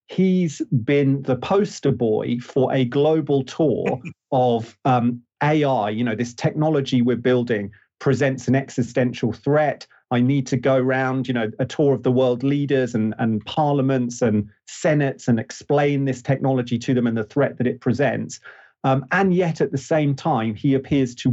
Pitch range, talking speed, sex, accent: 120-150 Hz, 175 wpm, male, British